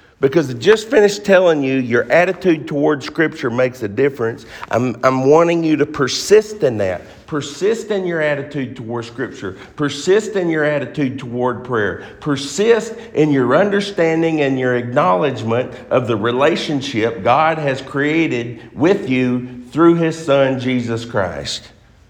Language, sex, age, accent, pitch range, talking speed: English, male, 50-69, American, 125-165 Hz, 145 wpm